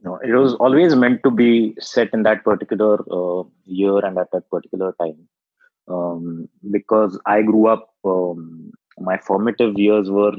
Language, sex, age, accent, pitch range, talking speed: English, male, 20-39, Indian, 95-110 Hz, 160 wpm